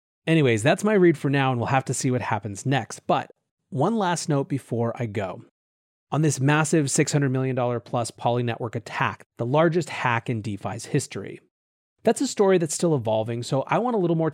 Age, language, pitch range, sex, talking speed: 30-49, English, 120-170 Hz, male, 200 wpm